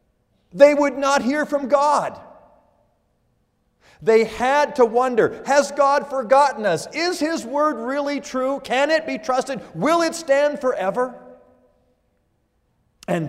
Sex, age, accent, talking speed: male, 50-69, American, 125 wpm